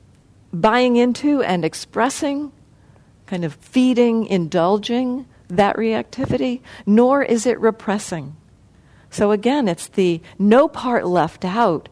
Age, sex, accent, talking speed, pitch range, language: 50-69, female, American, 110 wpm, 150-210 Hz, English